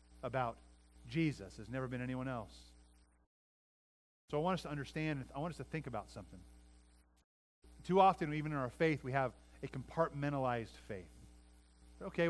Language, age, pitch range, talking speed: English, 40-59, 125-200 Hz, 155 wpm